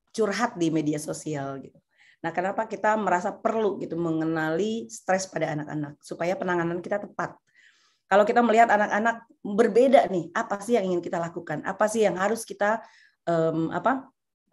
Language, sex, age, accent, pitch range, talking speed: Indonesian, female, 30-49, native, 175-235 Hz, 155 wpm